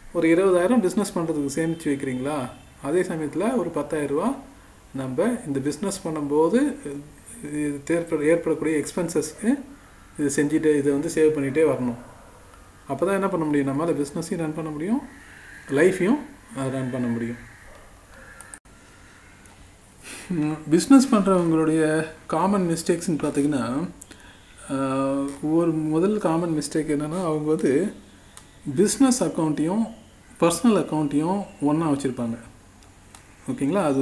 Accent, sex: native, male